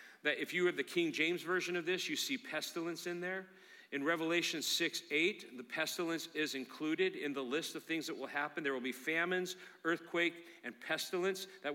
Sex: male